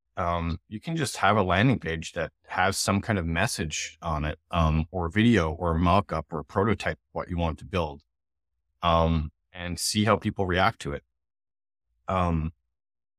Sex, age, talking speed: male, 30-49, 170 wpm